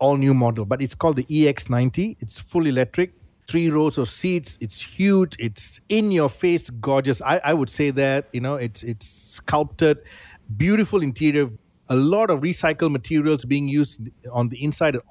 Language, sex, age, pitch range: English, male, 50-69, 120-150 Hz